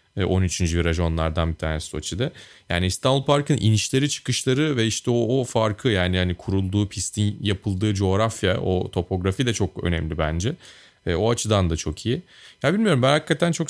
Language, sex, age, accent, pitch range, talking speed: Turkish, male, 30-49, native, 95-135 Hz, 165 wpm